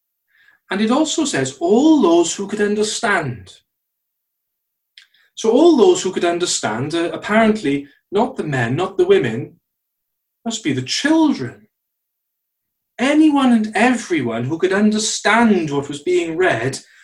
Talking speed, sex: 125 wpm, male